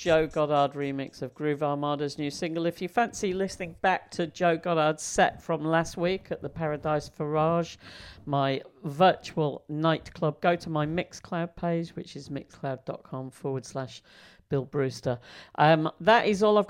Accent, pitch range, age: British, 140-175 Hz, 50-69